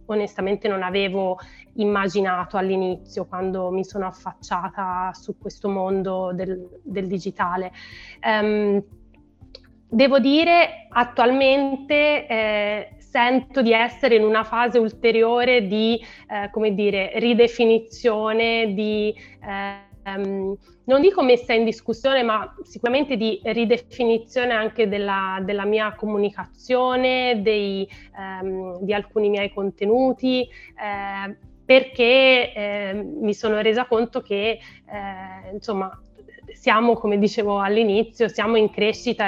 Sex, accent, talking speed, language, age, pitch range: female, native, 110 wpm, Italian, 20-39, 195-235 Hz